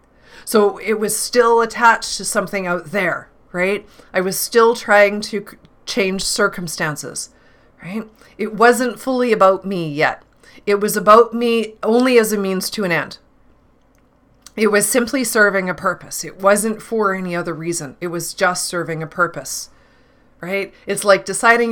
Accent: American